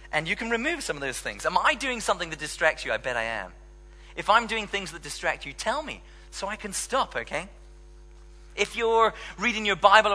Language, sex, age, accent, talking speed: English, male, 30-49, British, 225 wpm